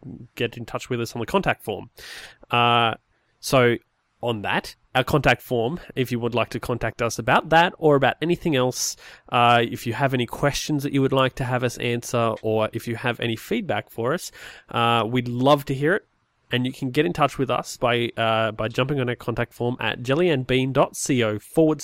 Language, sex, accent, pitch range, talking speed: English, male, Australian, 115-140 Hz, 210 wpm